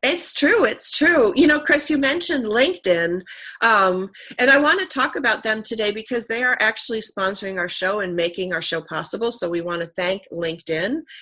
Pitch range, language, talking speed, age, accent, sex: 185-245 Hz, English, 200 wpm, 40-59, American, female